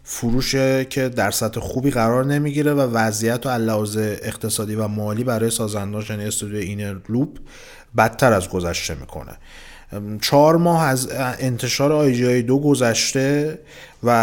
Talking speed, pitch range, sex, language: 135 wpm, 100-120 Hz, male, Persian